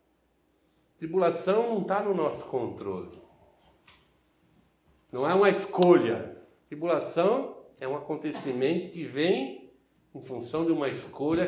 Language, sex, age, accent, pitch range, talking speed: Portuguese, male, 60-79, Brazilian, 115-190 Hz, 110 wpm